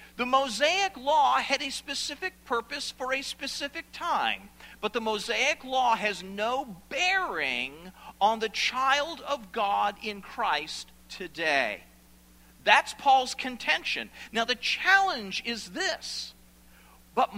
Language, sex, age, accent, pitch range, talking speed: English, male, 50-69, American, 175-270 Hz, 120 wpm